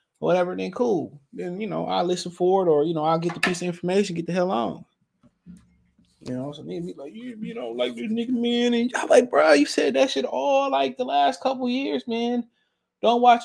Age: 20-39